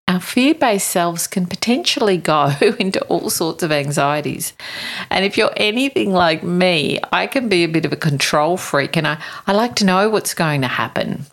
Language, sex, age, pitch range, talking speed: English, female, 50-69, 155-215 Hz, 190 wpm